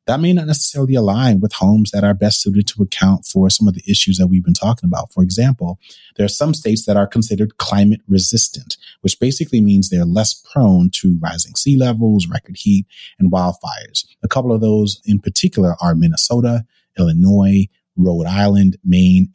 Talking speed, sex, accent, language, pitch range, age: 185 wpm, male, American, English, 90-120 Hz, 30-49